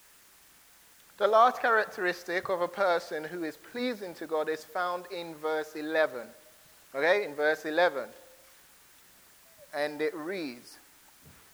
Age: 30-49